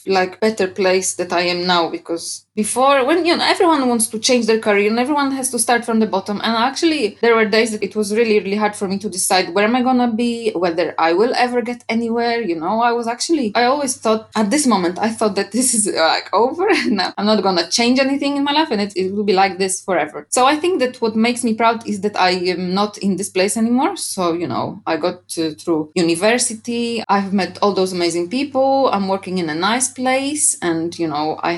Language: English